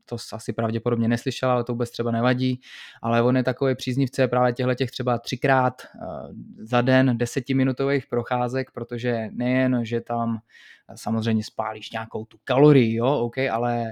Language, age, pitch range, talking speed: Czech, 20-39, 115-130 Hz, 150 wpm